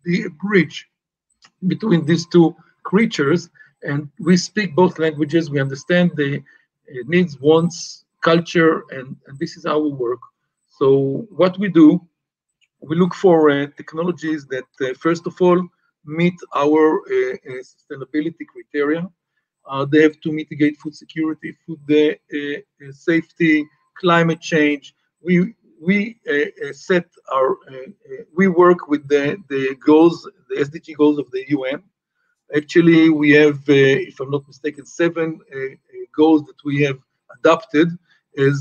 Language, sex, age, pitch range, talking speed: English, male, 50-69, 145-180 Hz, 145 wpm